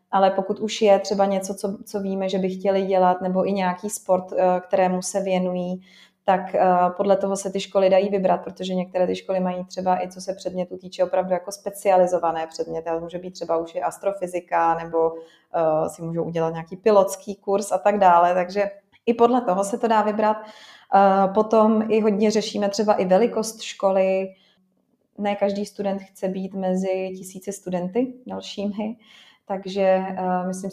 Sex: female